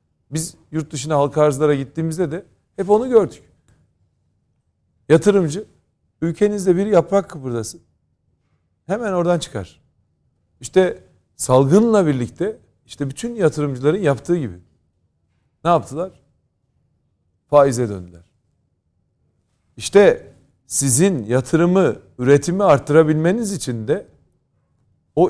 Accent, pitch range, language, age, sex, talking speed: native, 120-160 Hz, Turkish, 40-59, male, 90 wpm